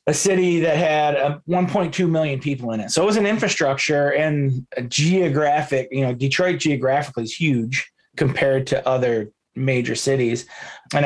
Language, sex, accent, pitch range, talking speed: English, male, American, 130-160 Hz, 165 wpm